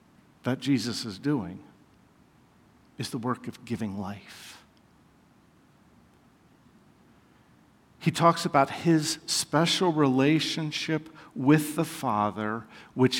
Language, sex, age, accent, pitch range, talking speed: English, male, 50-69, American, 125-180 Hz, 90 wpm